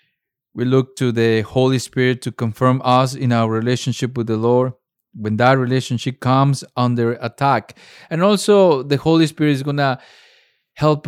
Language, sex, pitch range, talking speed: English, male, 120-140 Hz, 160 wpm